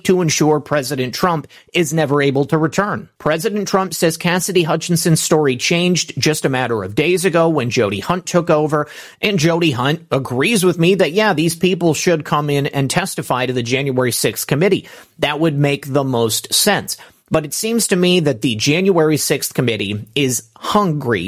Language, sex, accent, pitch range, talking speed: English, male, American, 135-180 Hz, 185 wpm